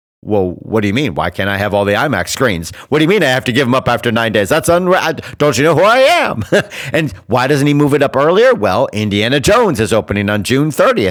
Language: English